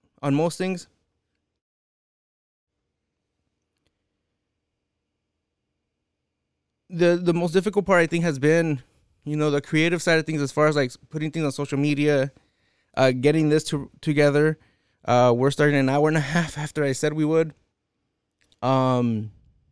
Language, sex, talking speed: English, male, 140 wpm